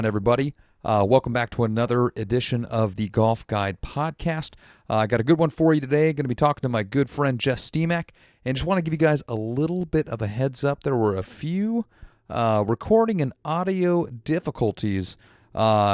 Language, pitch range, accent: English, 105-140 Hz, American